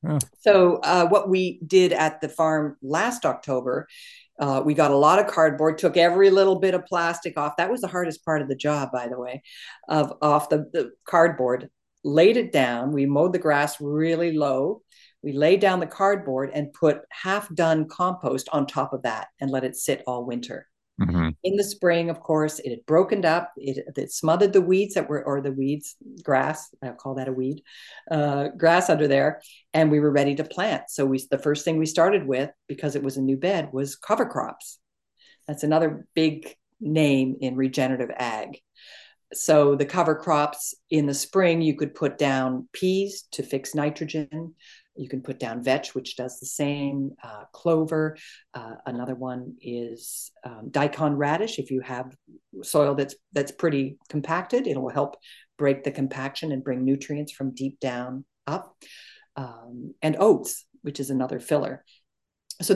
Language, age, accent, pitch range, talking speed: English, 50-69, American, 135-165 Hz, 180 wpm